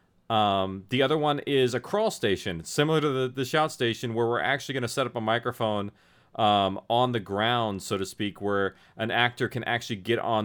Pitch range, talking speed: 100-125 Hz, 210 wpm